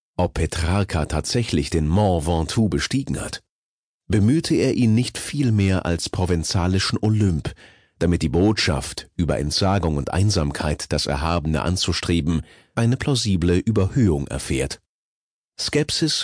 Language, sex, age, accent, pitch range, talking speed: German, male, 40-59, German, 85-110 Hz, 115 wpm